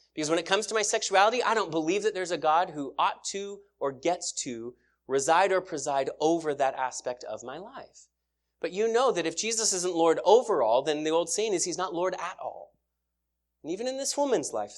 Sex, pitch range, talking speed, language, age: male, 150-205 Hz, 220 wpm, English, 30-49